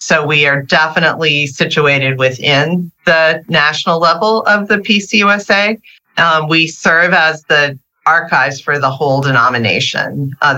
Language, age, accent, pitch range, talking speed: English, 40-59, American, 140-170 Hz, 130 wpm